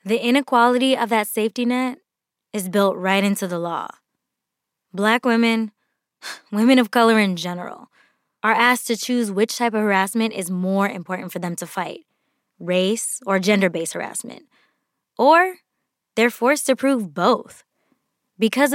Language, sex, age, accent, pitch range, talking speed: English, female, 20-39, American, 185-230 Hz, 145 wpm